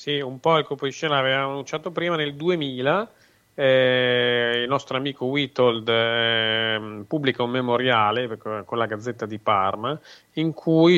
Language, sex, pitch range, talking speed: Italian, male, 115-140 Hz, 155 wpm